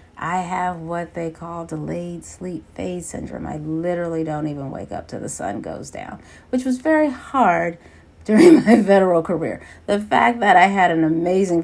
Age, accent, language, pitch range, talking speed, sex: 40-59, American, English, 160-220 Hz, 180 wpm, female